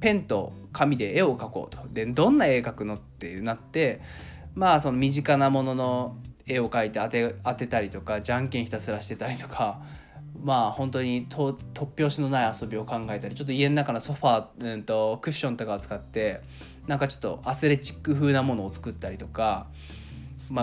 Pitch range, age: 110-165 Hz, 20-39